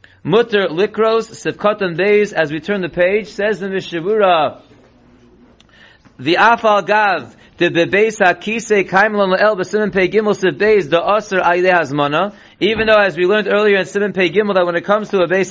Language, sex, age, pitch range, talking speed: English, male, 30-49, 175-210 Hz, 165 wpm